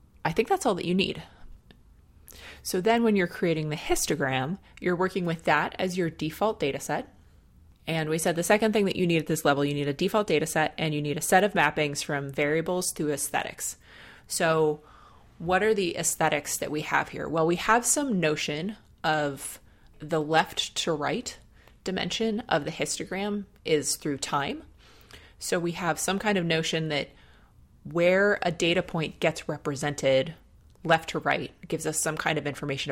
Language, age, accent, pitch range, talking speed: English, 20-39, American, 145-175 Hz, 185 wpm